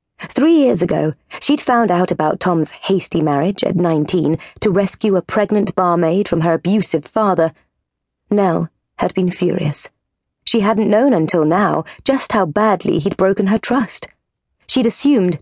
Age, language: 30-49, English